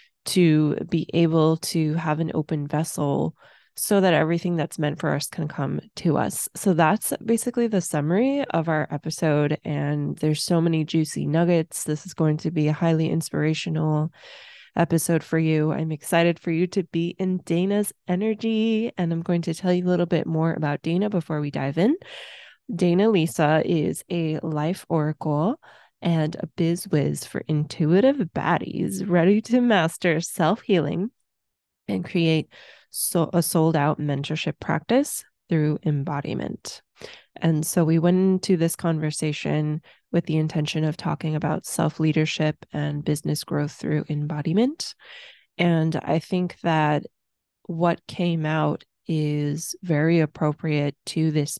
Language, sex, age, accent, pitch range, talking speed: English, female, 20-39, American, 155-180 Hz, 145 wpm